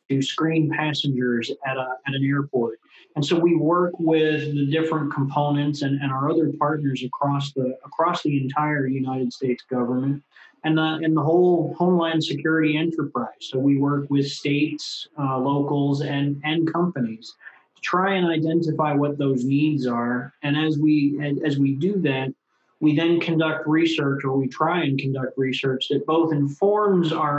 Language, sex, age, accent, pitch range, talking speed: English, male, 30-49, American, 130-155 Hz, 165 wpm